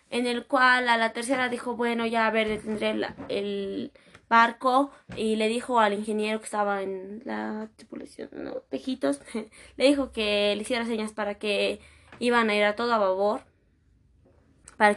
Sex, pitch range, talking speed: female, 200-255 Hz, 170 wpm